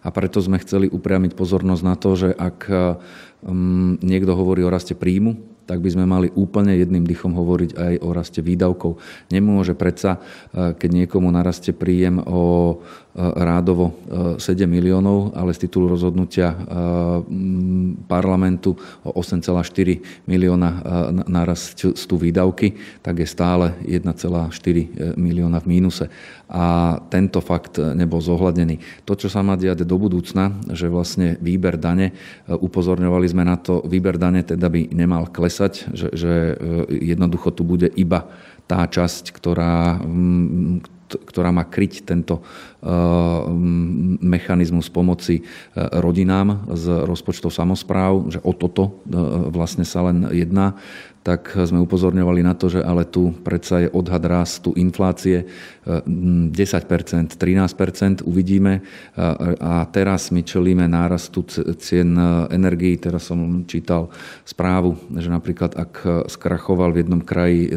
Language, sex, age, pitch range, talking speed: Slovak, male, 40-59, 85-90 Hz, 120 wpm